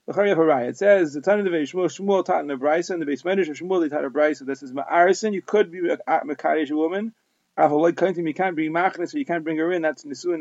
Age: 30-49